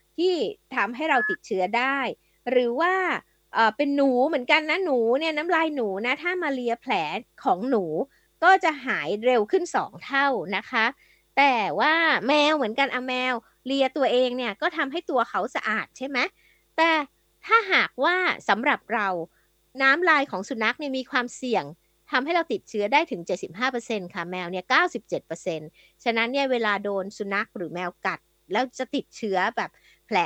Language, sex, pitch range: Thai, female, 210-300 Hz